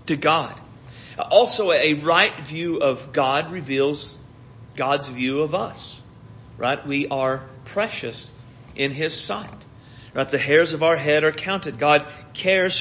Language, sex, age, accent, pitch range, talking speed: English, male, 40-59, American, 125-155 Hz, 140 wpm